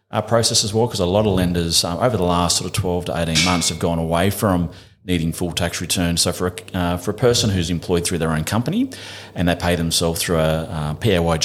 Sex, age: male, 30-49